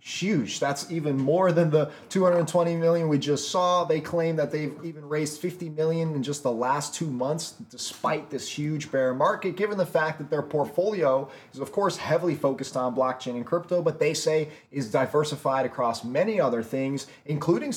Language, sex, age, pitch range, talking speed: English, male, 20-39, 130-160 Hz, 185 wpm